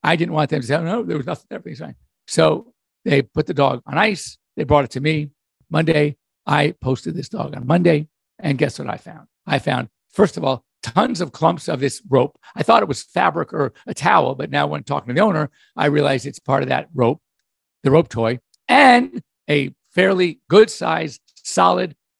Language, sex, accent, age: English, male, American, 50-69